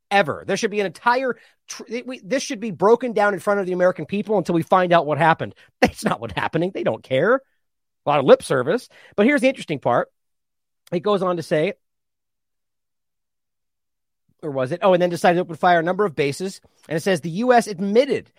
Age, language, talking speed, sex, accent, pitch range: 30-49, English, 220 wpm, male, American, 160-230 Hz